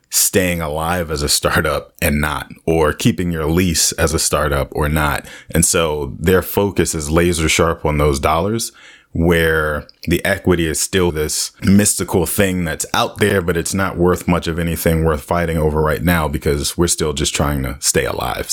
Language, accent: English, American